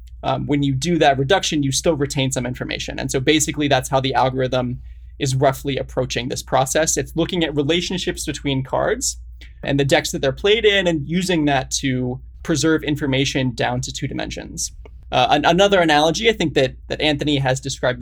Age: 20-39